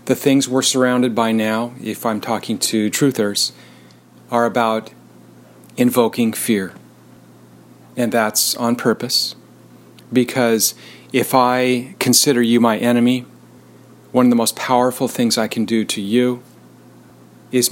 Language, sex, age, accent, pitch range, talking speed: English, male, 40-59, American, 105-125 Hz, 130 wpm